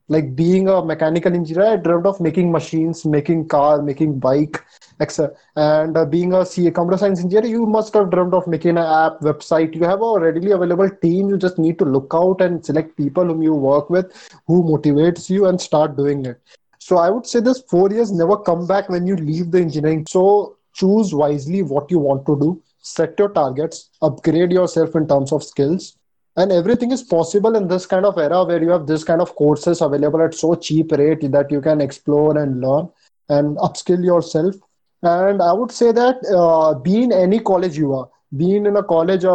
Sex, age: male, 20-39